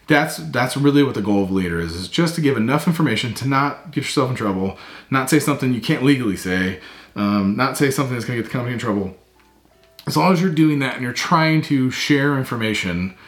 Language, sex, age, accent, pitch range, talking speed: English, male, 40-59, American, 100-145 Hz, 240 wpm